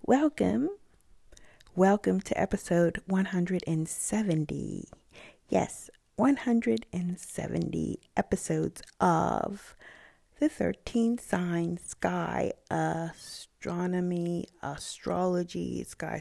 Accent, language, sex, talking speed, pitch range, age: American, English, female, 60 wpm, 170-215 Hz, 40-59